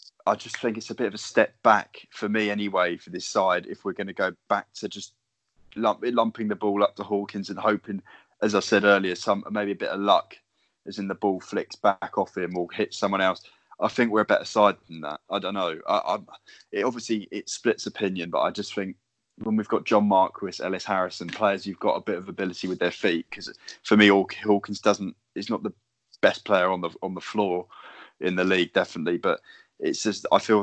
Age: 20-39